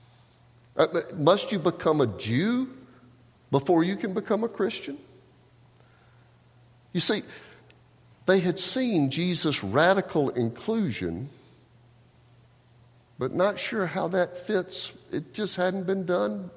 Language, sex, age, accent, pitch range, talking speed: English, male, 50-69, American, 115-140 Hz, 110 wpm